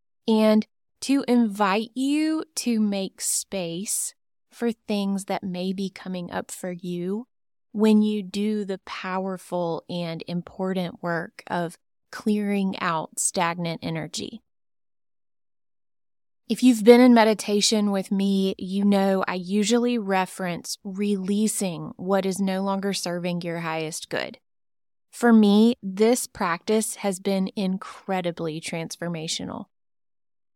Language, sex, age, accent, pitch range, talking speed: English, female, 20-39, American, 180-220 Hz, 115 wpm